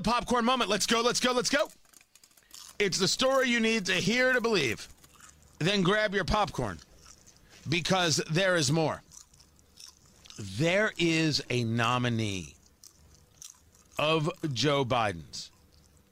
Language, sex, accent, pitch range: English, male, American, 110-185 Hz